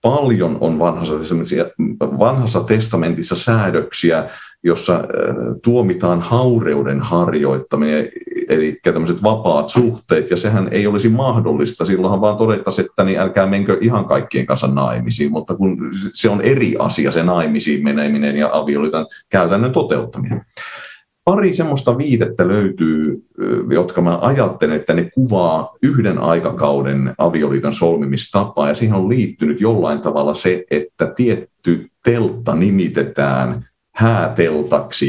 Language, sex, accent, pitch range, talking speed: Finnish, male, native, 75-110 Hz, 115 wpm